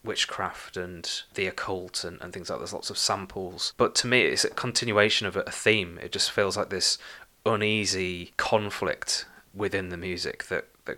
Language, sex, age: English, male, 20-39